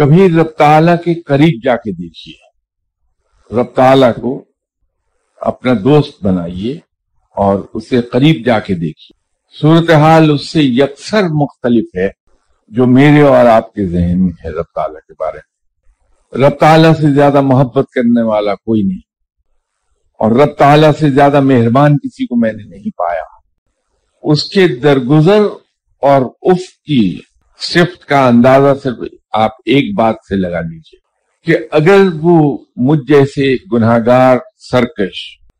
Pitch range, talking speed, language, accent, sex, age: 110-150 Hz, 135 wpm, English, Indian, male, 50-69